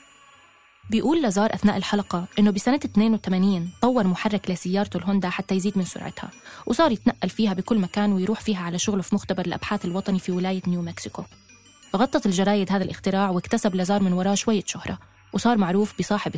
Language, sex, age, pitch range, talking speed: Arabic, female, 20-39, 185-215 Hz, 165 wpm